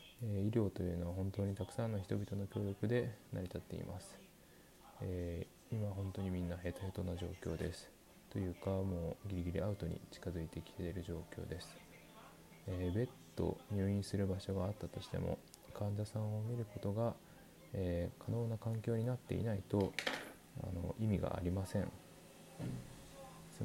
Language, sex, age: Japanese, male, 20-39